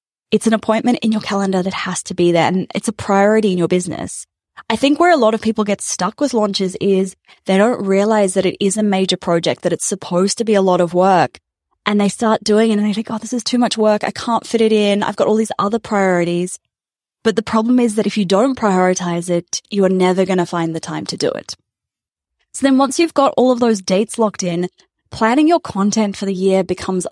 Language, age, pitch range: English, 20-39, 180-225 Hz